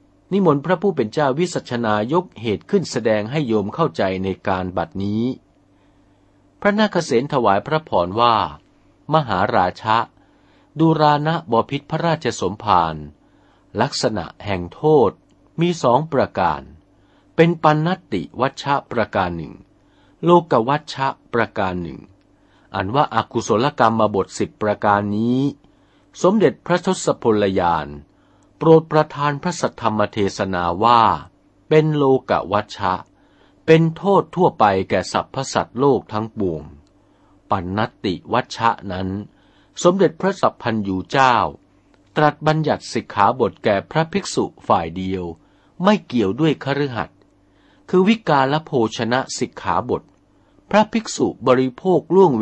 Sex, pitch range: male, 95-155 Hz